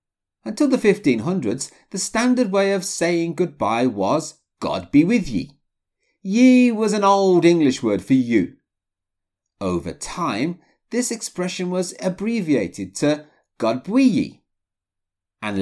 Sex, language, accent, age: male, English, British, 40-59